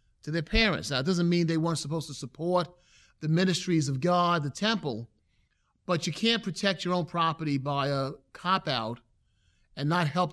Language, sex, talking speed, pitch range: English, male, 180 wpm, 140-185 Hz